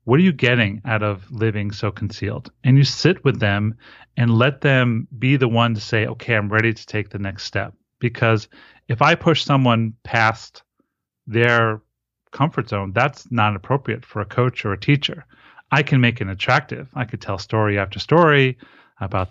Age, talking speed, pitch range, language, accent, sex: 30-49, 185 wpm, 105-135 Hz, English, American, male